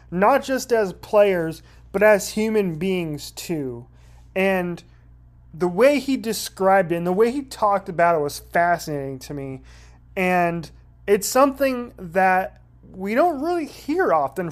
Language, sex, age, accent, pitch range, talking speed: English, male, 30-49, American, 160-215 Hz, 145 wpm